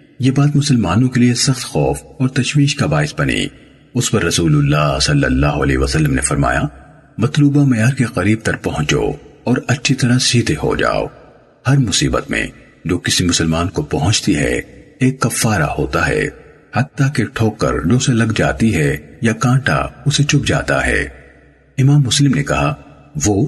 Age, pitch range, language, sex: 50-69, 110-140 Hz, Urdu, male